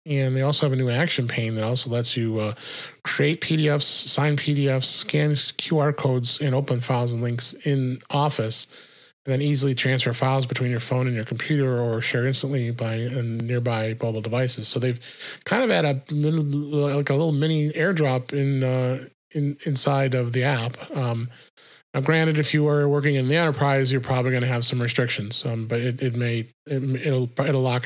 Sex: male